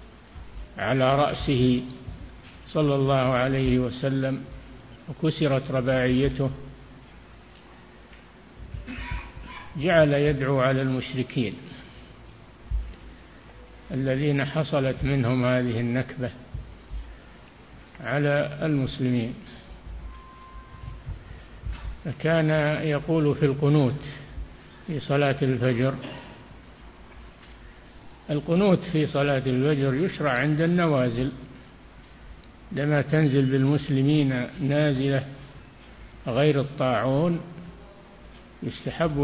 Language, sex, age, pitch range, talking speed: Arabic, male, 60-79, 125-145 Hz, 60 wpm